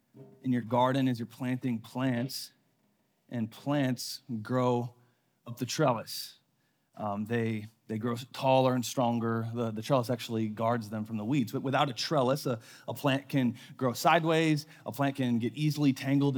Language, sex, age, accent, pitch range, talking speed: English, male, 30-49, American, 120-155 Hz, 165 wpm